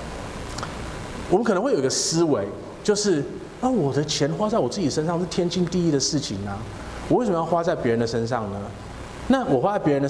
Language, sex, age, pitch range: Chinese, male, 20-39, 115-175 Hz